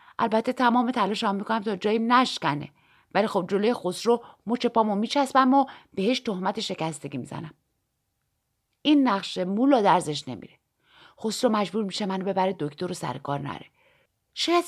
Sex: female